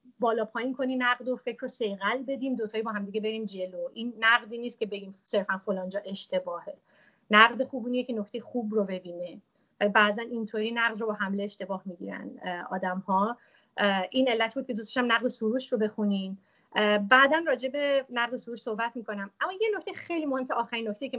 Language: Persian